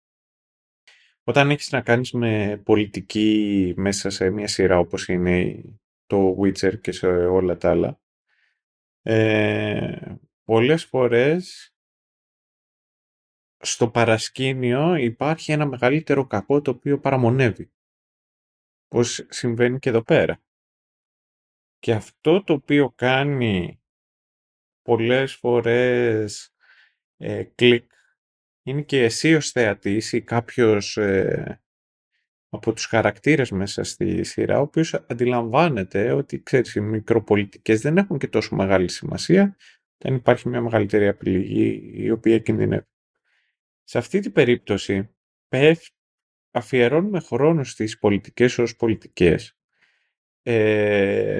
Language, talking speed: Greek, 130 wpm